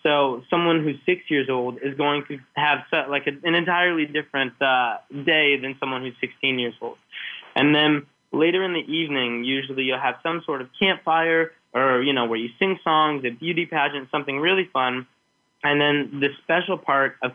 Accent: American